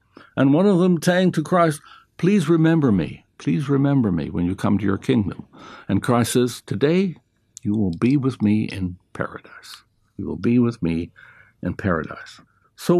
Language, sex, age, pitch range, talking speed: English, male, 60-79, 110-140 Hz, 175 wpm